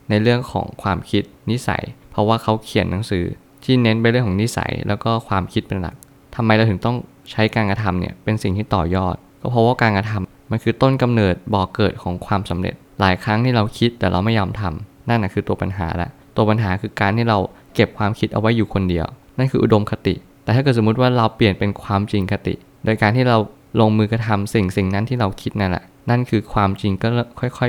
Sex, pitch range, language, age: male, 100-120 Hz, Thai, 20-39